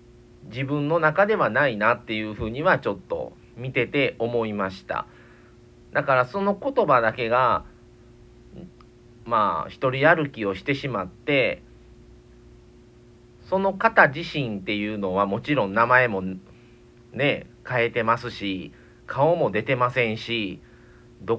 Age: 40-59